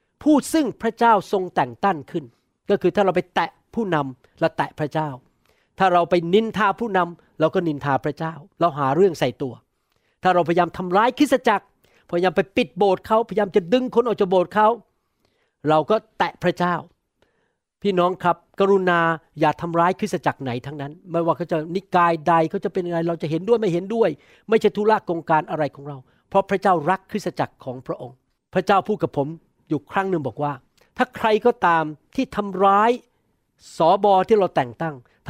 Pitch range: 160-205 Hz